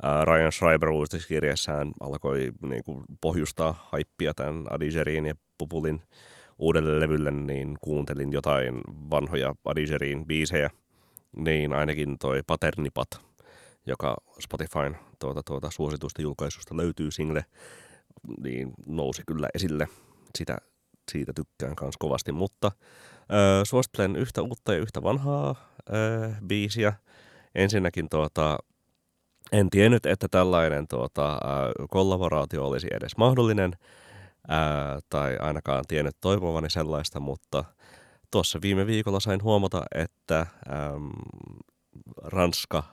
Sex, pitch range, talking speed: male, 75-90 Hz, 105 wpm